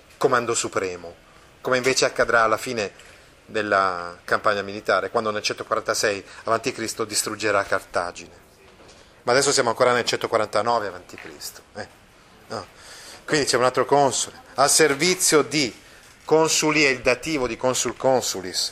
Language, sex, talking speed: Italian, male, 135 wpm